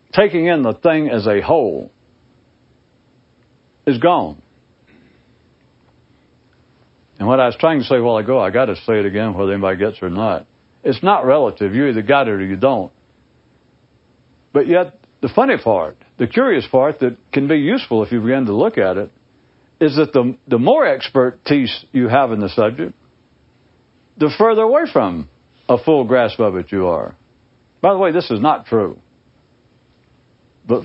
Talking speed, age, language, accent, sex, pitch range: 175 wpm, 60-79, English, American, male, 110-150 Hz